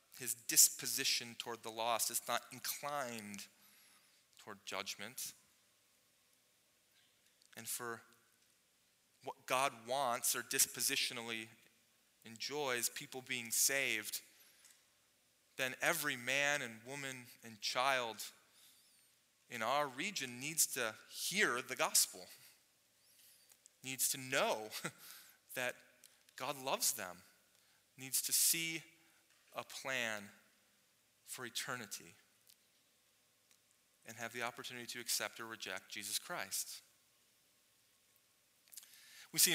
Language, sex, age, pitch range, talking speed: English, male, 30-49, 120-135 Hz, 95 wpm